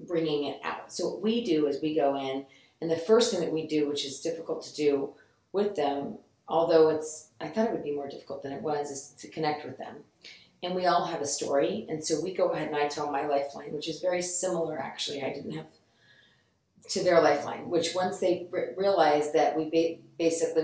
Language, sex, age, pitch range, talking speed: English, female, 40-59, 145-175 Hz, 215 wpm